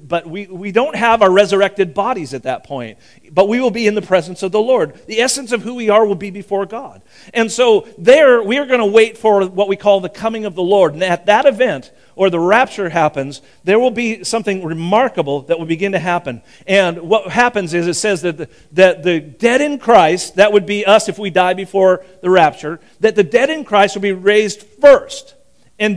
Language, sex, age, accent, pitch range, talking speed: English, male, 50-69, American, 170-225 Hz, 230 wpm